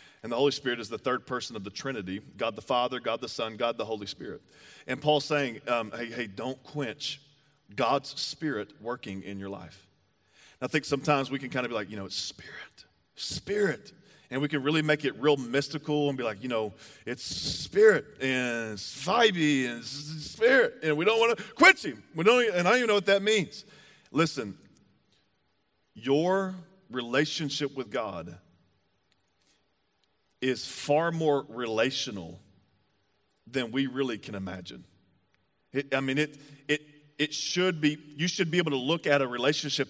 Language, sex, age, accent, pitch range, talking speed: English, male, 40-59, American, 125-155 Hz, 180 wpm